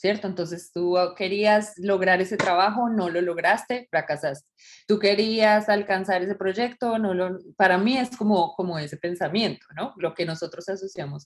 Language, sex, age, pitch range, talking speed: English, female, 20-39, 170-215 Hz, 160 wpm